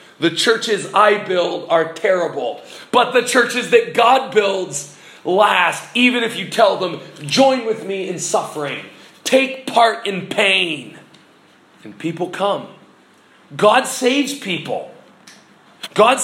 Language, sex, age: English, male, 40-59